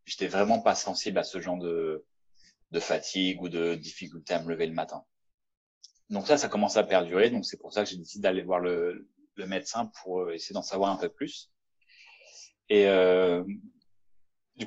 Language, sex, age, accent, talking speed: French, male, 30-49, French, 190 wpm